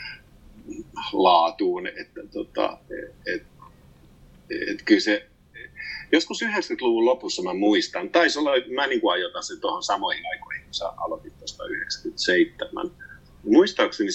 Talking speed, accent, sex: 105 wpm, native, male